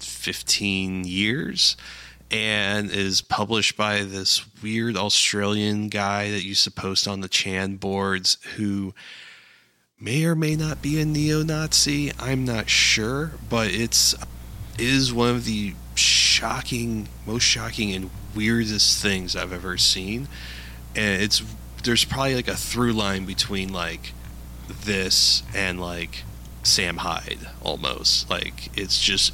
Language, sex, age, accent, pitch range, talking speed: English, male, 30-49, American, 85-110 Hz, 130 wpm